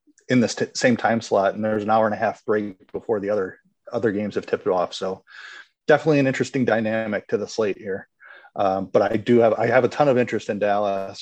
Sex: male